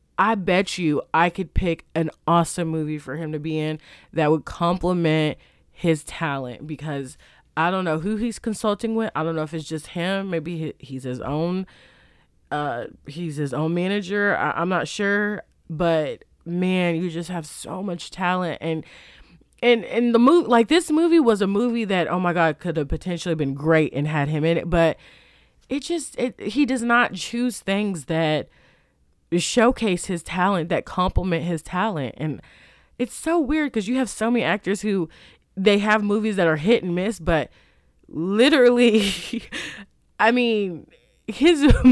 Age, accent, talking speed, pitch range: 20-39, American, 175 wpm, 160-215 Hz